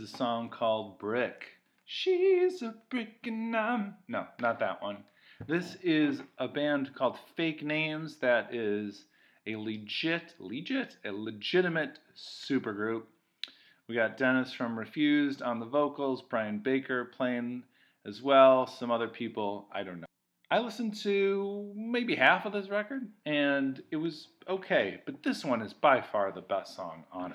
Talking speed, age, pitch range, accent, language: 150 wpm, 40-59, 110-165 Hz, American, English